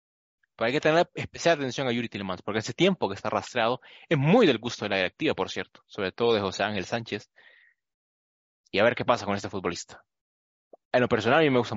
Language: English